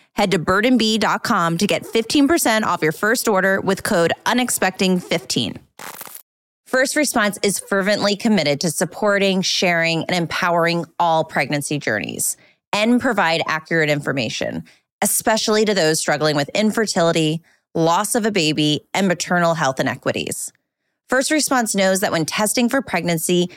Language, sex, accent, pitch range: English, female, American, 165-225 Hz